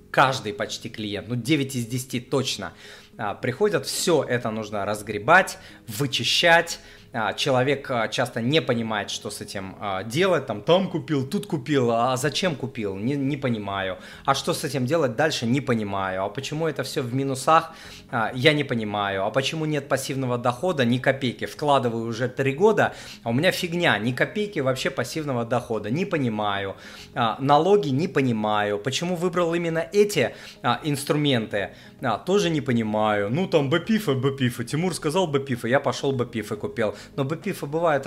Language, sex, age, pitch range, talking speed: Russian, male, 20-39, 110-145 Hz, 160 wpm